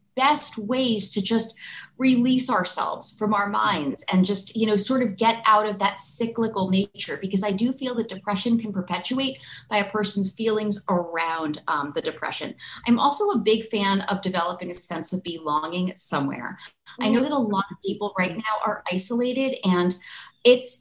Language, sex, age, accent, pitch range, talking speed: English, female, 30-49, American, 195-245 Hz, 180 wpm